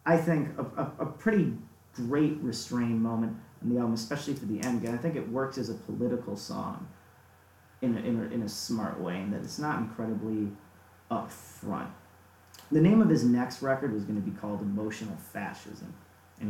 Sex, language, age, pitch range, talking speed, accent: male, English, 30-49, 105-130 Hz, 195 wpm, American